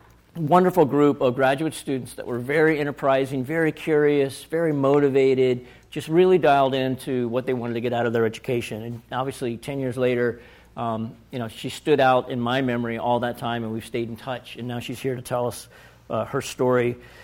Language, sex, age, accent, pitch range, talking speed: English, male, 50-69, American, 120-145 Hz, 200 wpm